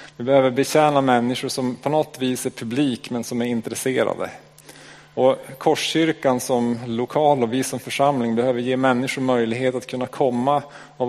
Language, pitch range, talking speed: Swedish, 115-145 Hz, 160 wpm